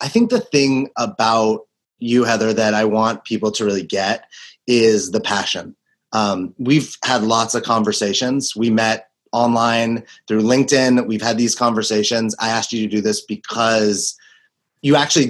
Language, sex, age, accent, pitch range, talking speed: English, male, 30-49, American, 110-135 Hz, 160 wpm